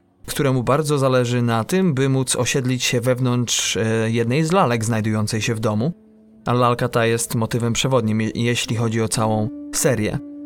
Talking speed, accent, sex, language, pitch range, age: 160 wpm, native, male, Polish, 120-145 Hz, 30-49